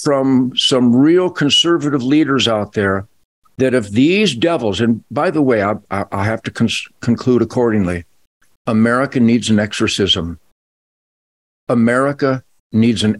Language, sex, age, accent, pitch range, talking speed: English, male, 50-69, American, 115-180 Hz, 125 wpm